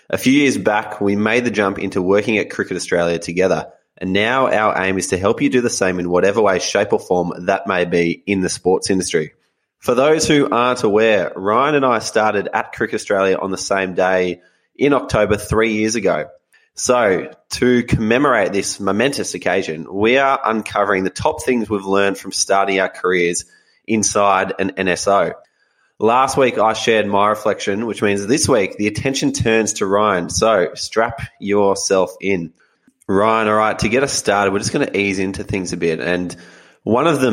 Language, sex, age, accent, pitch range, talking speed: English, male, 20-39, Australian, 90-105 Hz, 190 wpm